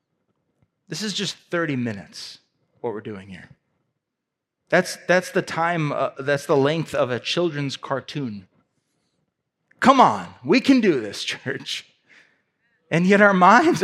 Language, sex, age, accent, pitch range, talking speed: English, male, 30-49, American, 130-185 Hz, 140 wpm